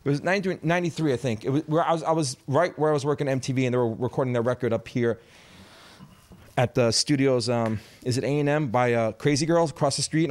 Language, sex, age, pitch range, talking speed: English, male, 30-49, 120-155 Hz, 245 wpm